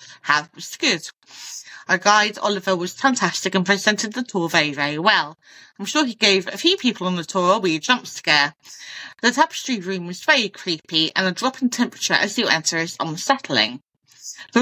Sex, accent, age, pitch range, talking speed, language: female, British, 30-49, 165-240 Hz, 190 wpm, English